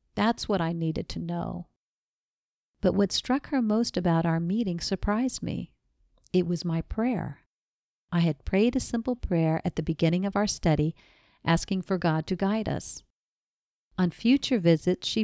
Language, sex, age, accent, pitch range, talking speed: English, female, 50-69, American, 165-215 Hz, 165 wpm